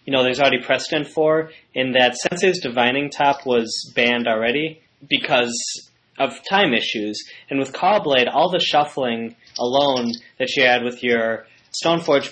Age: 10-29